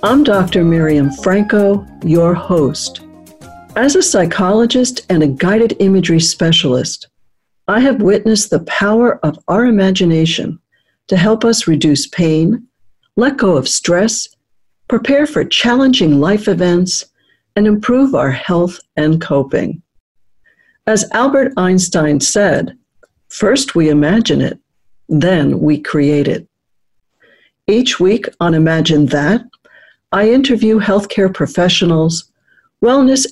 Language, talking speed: English, 115 wpm